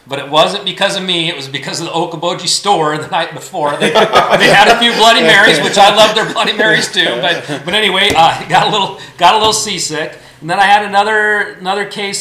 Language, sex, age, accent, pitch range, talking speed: English, male, 40-59, American, 145-190 Hz, 240 wpm